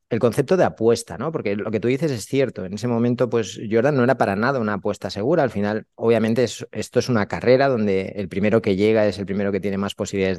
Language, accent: Spanish, Spanish